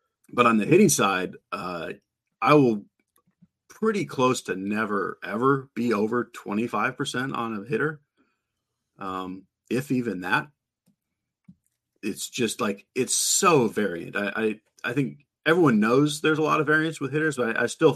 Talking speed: 155 wpm